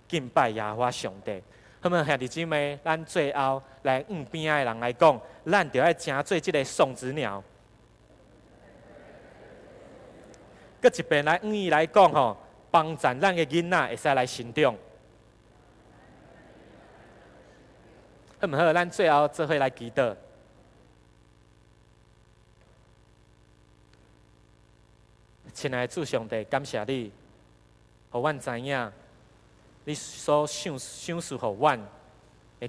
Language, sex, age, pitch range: Chinese, male, 30-49, 110-150 Hz